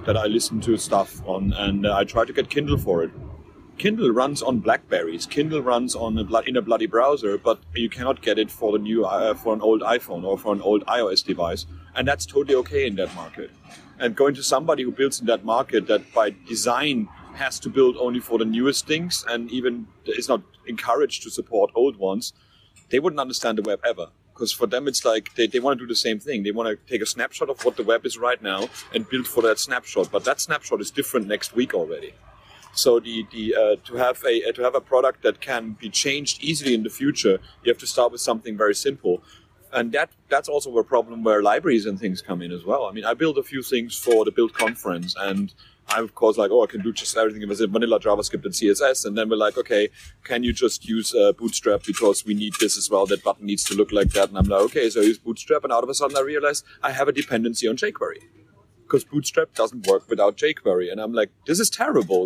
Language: German